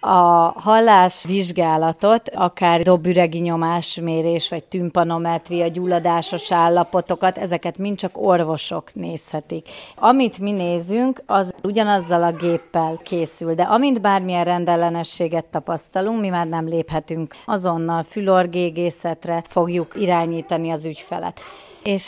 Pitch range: 170-190 Hz